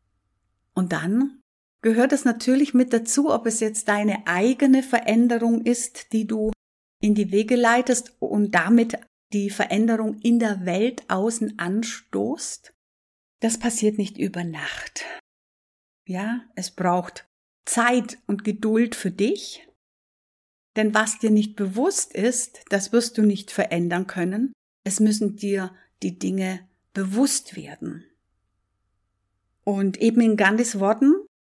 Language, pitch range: German, 185-235 Hz